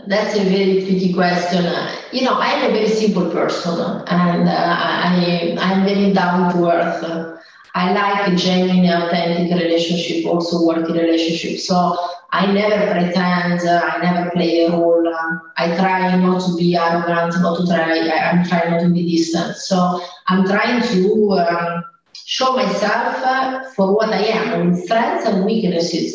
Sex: female